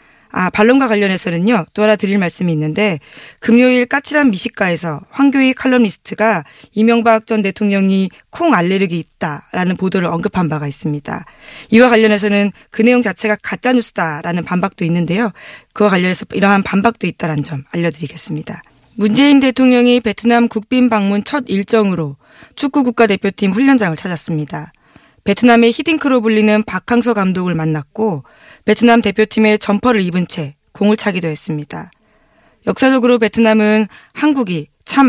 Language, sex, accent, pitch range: Korean, female, native, 170-230 Hz